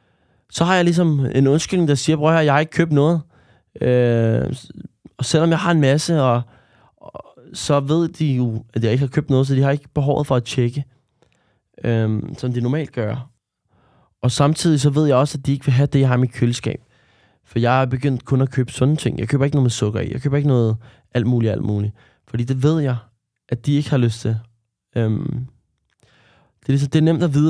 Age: 20-39